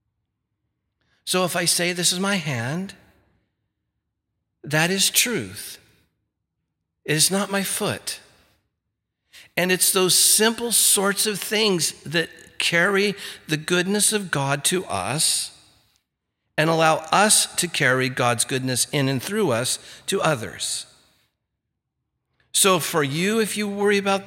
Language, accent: English, American